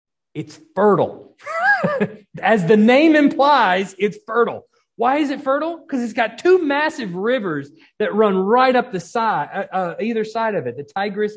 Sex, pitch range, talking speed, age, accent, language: male, 200-280 Hz, 170 wpm, 40-59, American, English